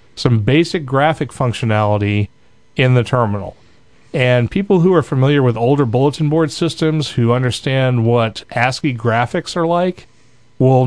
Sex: male